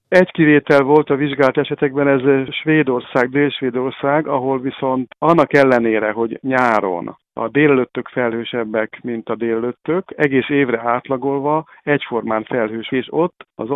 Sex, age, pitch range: male, 50-69, 110-135 Hz